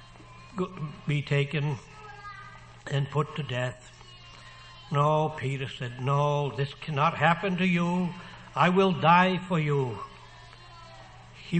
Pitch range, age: 130-155 Hz, 60-79